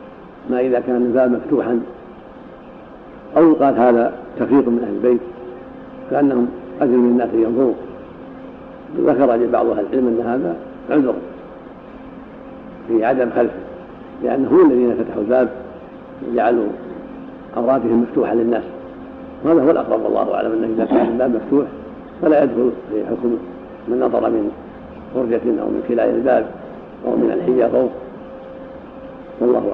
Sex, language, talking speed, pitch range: male, Arabic, 125 wpm, 120-150 Hz